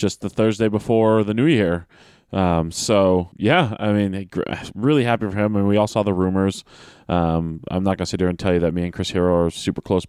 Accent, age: American, 20-39